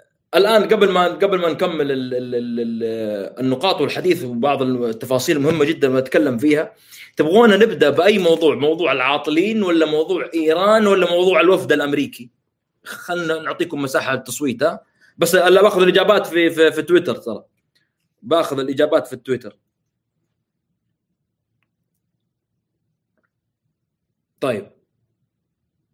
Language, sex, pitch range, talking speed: Arabic, male, 130-195 Hz, 110 wpm